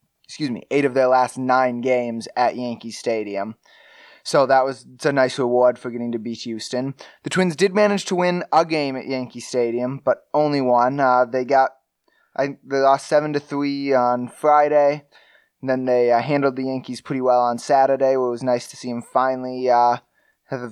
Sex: male